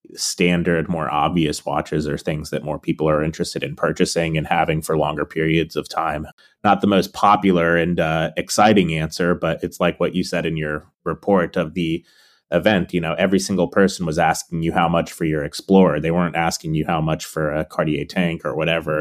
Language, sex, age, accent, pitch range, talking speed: English, male, 30-49, American, 80-90 Hz, 205 wpm